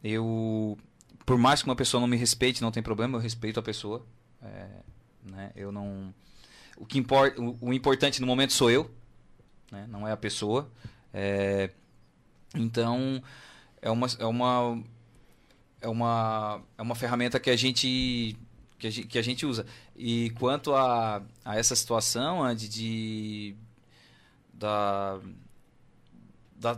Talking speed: 150 wpm